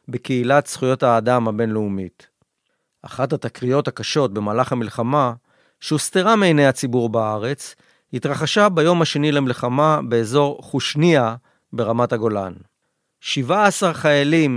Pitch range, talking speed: 120-155 Hz, 95 wpm